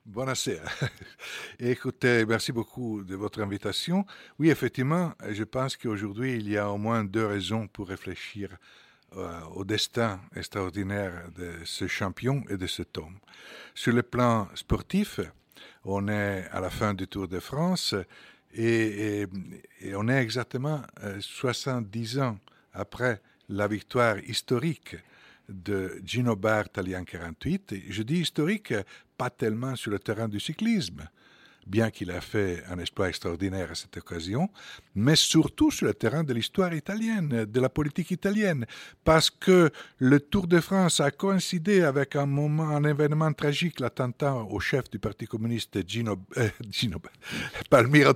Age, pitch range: 60-79, 105-150 Hz